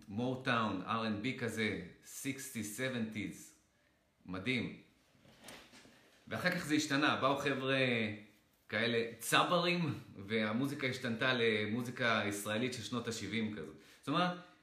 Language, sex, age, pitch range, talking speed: Hebrew, male, 30-49, 105-140 Hz, 95 wpm